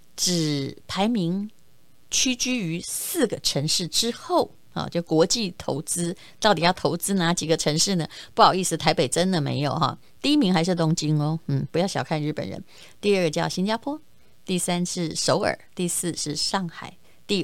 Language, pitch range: Chinese, 155-185 Hz